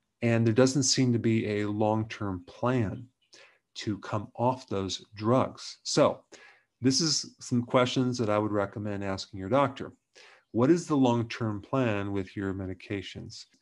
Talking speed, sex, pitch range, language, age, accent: 150 wpm, male, 105-130 Hz, English, 40-59, American